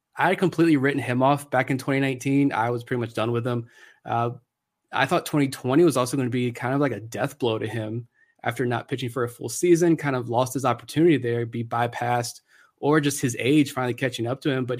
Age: 20-39